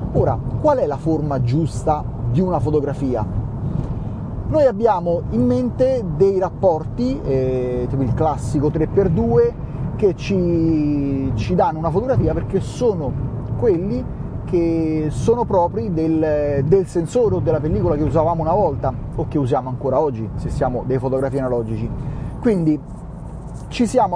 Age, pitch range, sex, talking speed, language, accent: 30-49, 130-180 Hz, male, 135 wpm, Italian, native